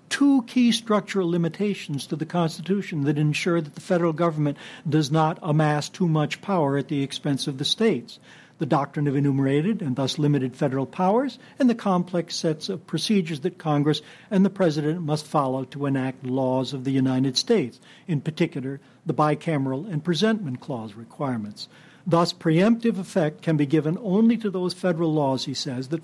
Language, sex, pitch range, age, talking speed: English, male, 145-190 Hz, 60-79, 175 wpm